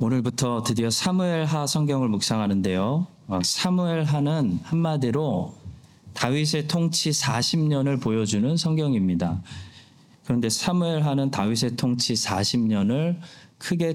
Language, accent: Korean, native